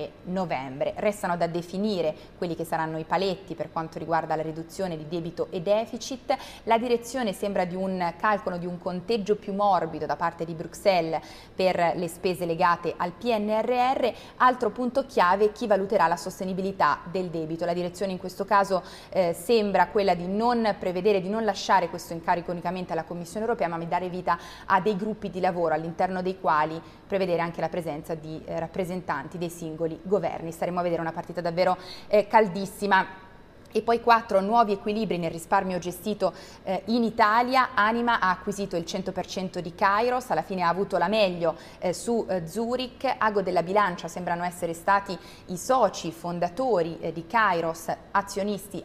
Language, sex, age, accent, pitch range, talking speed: Italian, female, 30-49, native, 170-205 Hz, 170 wpm